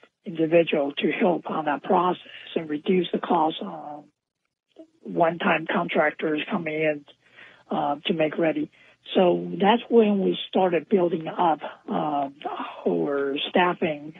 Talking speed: 125 wpm